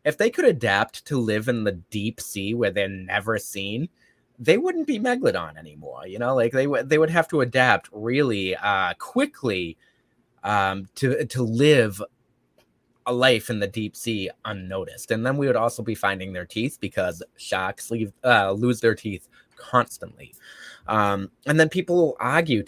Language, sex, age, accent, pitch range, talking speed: English, male, 20-39, American, 100-150 Hz, 170 wpm